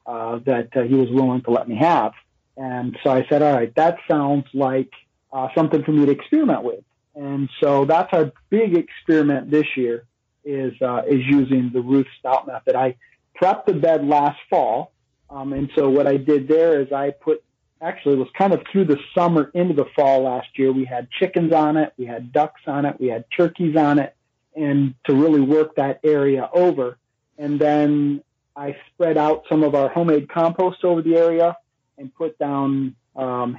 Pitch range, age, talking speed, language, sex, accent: 130-155 Hz, 40-59, 195 wpm, English, male, American